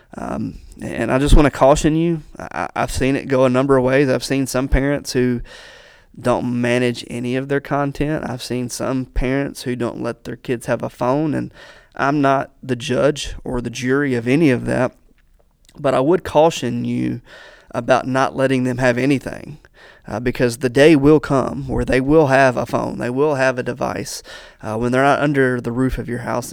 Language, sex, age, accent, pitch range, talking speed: English, male, 20-39, American, 125-140 Hz, 200 wpm